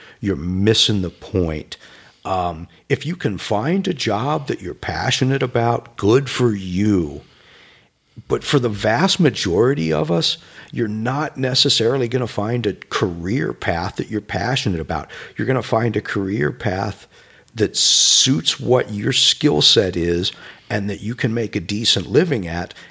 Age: 50-69